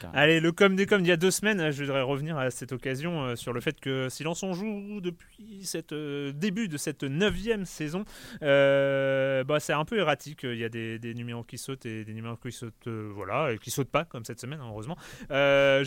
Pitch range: 115-150 Hz